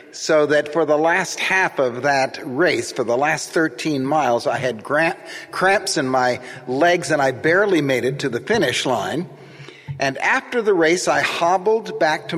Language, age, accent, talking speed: English, 50-69, American, 180 wpm